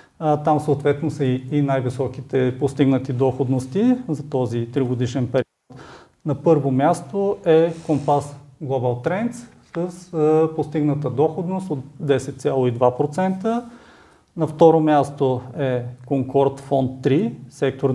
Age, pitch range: 40-59, 135-165 Hz